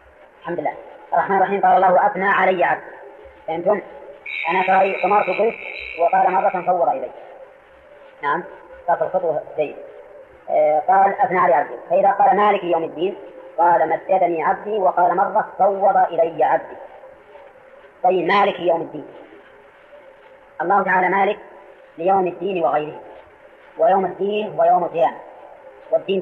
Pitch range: 175-210 Hz